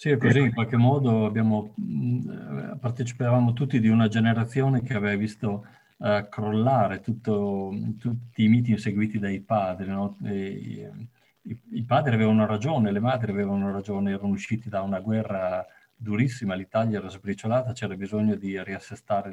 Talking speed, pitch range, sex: 145 wpm, 100-115 Hz, male